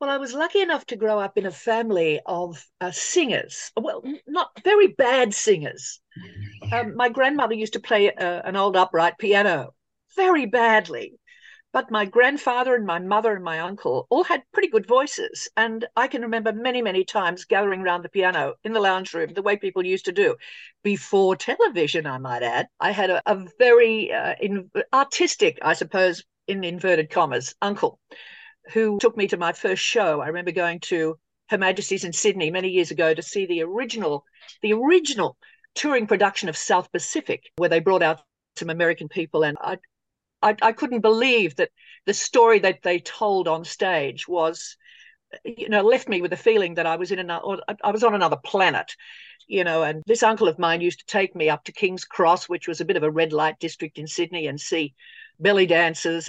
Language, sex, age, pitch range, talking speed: English, female, 50-69, 170-250 Hz, 195 wpm